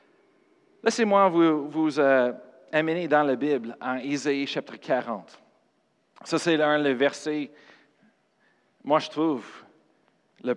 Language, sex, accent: French, male, Canadian